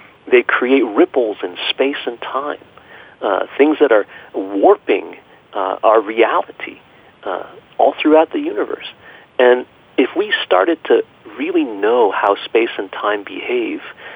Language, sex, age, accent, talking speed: English, male, 50-69, American, 135 wpm